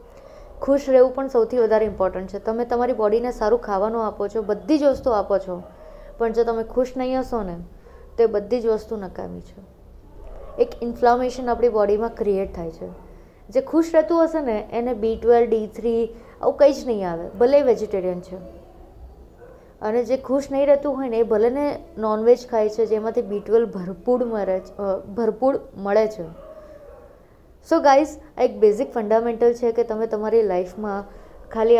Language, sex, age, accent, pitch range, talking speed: Gujarati, female, 20-39, native, 220-255 Hz, 165 wpm